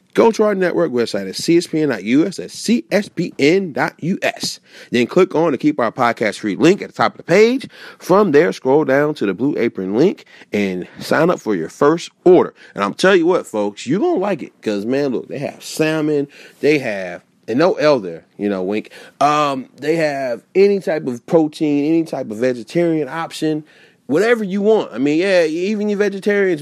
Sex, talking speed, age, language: male, 200 wpm, 30-49, English